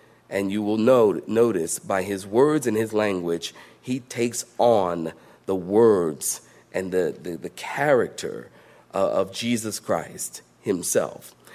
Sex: male